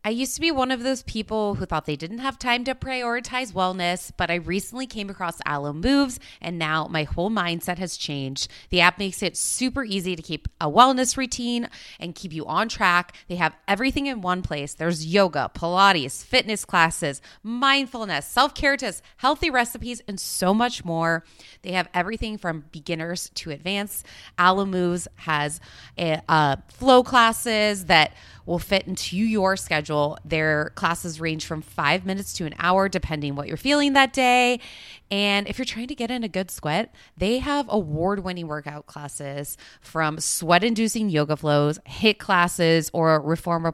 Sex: female